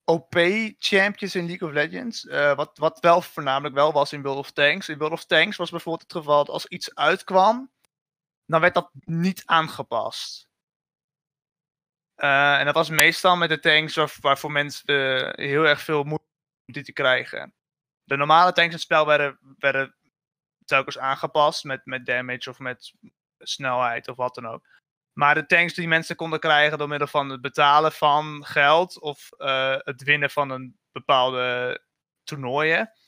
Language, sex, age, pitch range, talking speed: Dutch, male, 20-39, 145-175 Hz, 175 wpm